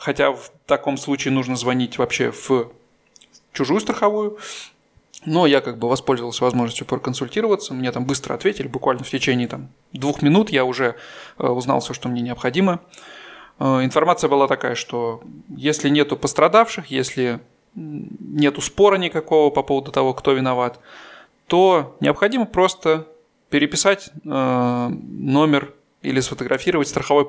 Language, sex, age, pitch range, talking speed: Russian, male, 20-39, 125-155 Hz, 130 wpm